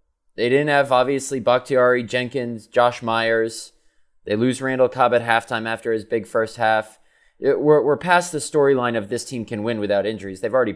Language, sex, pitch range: English, male, 110-140 Hz